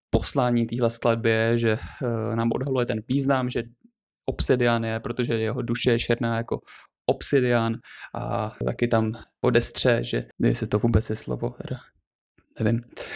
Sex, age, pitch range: male, 20-39, 110-120 Hz